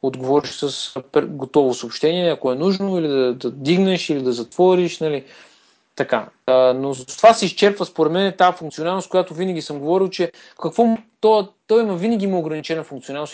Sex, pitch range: male, 145-200 Hz